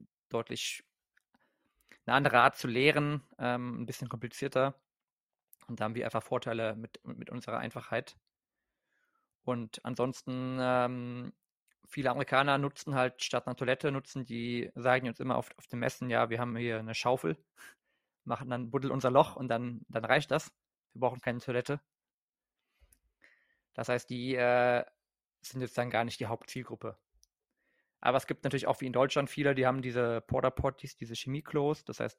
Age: 20-39